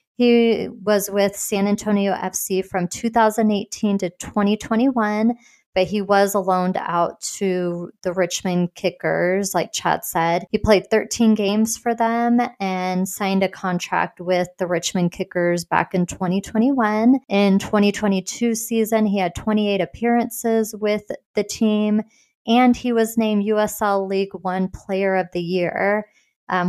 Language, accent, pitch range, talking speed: English, American, 185-220 Hz, 135 wpm